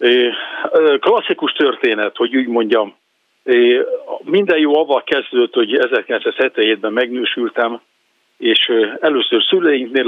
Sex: male